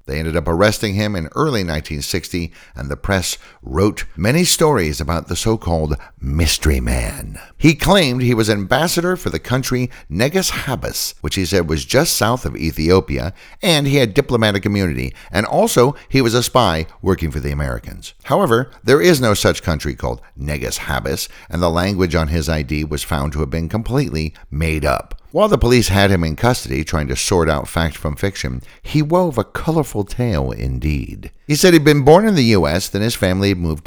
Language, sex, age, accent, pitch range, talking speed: English, male, 60-79, American, 75-110 Hz, 190 wpm